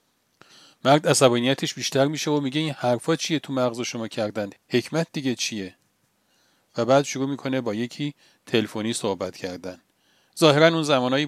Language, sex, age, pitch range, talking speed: Persian, male, 40-59, 115-145 Hz, 150 wpm